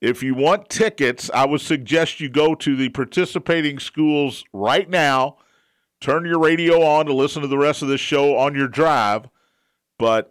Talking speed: 180 wpm